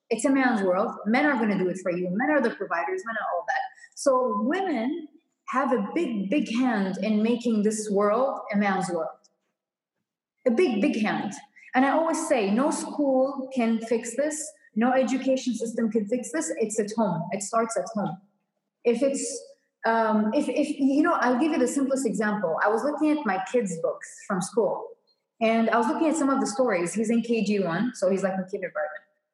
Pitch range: 210-285 Hz